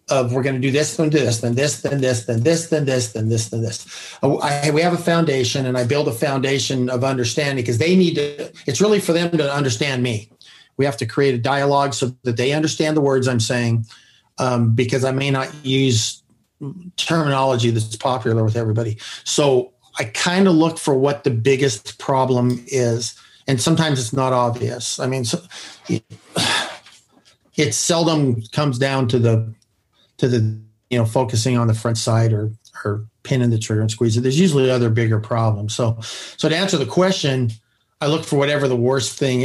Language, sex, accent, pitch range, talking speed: English, male, American, 115-145 Hz, 210 wpm